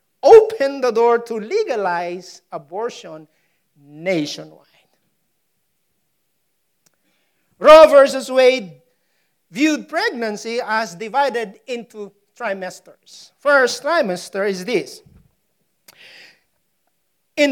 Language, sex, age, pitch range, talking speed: English, male, 50-69, 190-300 Hz, 70 wpm